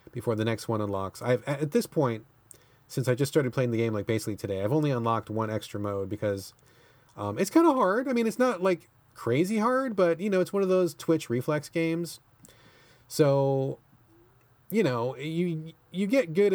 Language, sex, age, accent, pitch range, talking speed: English, male, 30-49, American, 115-150 Hz, 200 wpm